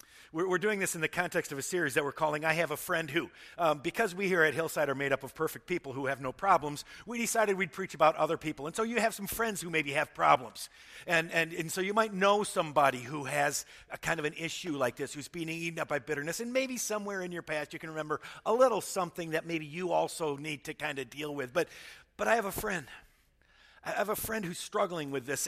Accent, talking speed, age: American, 255 wpm, 50-69